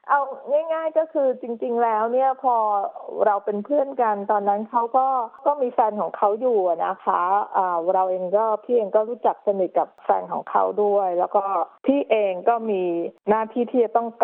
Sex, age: female, 20-39